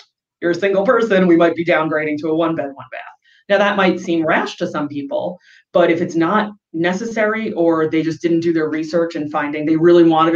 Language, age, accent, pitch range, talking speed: English, 30-49, American, 155-195 Hz, 215 wpm